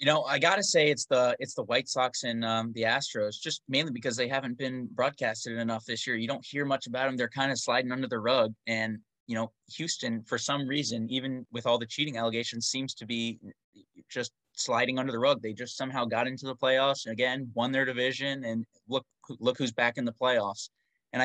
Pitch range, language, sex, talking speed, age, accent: 110-130 Hz, English, male, 230 wpm, 20-39, American